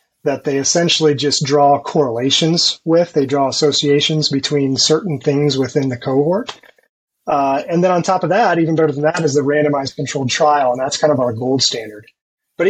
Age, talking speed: 30-49, 190 wpm